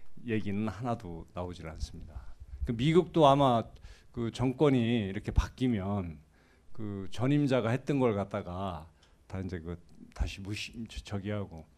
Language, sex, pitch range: Korean, male, 95-120 Hz